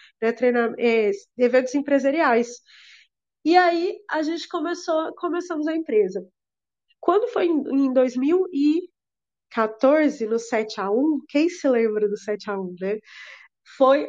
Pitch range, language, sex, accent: 245-315 Hz, Portuguese, female, Brazilian